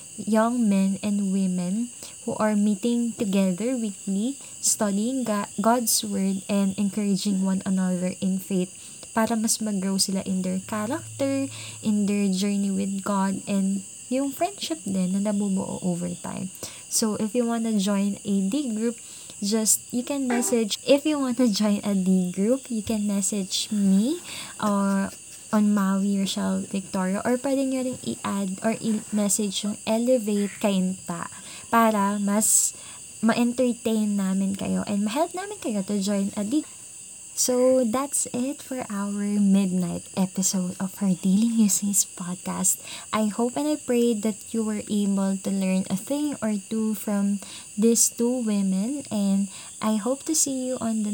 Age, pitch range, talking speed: 20-39, 195-230 Hz, 150 wpm